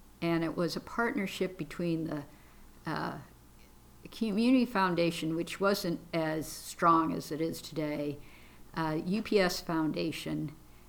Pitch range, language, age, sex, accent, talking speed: 155-185 Hz, English, 60-79, female, American, 115 wpm